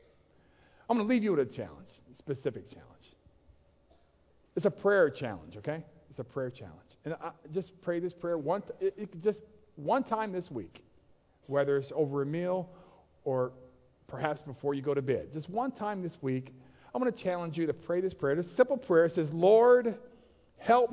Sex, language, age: male, English, 50-69